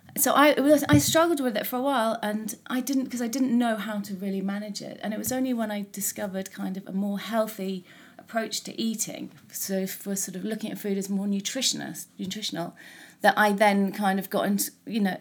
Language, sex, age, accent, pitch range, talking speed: English, female, 30-49, British, 190-230 Hz, 225 wpm